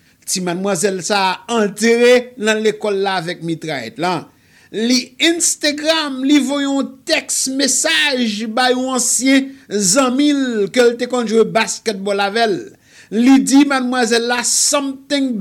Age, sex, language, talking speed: 50-69, male, English, 125 wpm